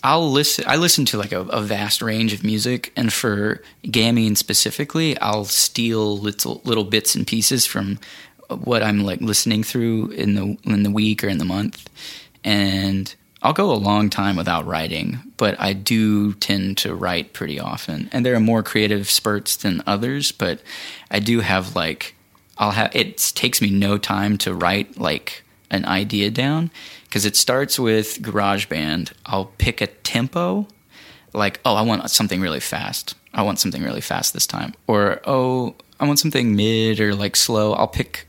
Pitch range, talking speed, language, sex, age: 100-115 Hz, 180 wpm, English, male, 20-39